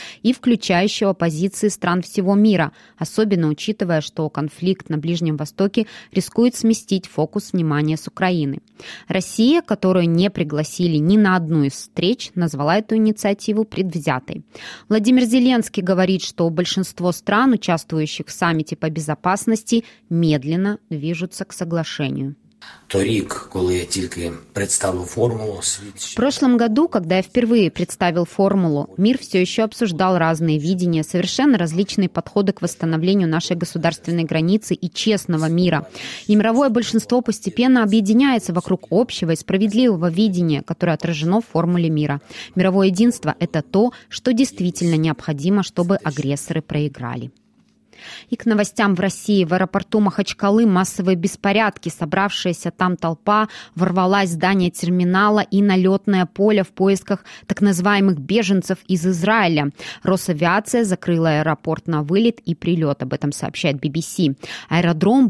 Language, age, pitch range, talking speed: Russian, 20-39, 165-210 Hz, 125 wpm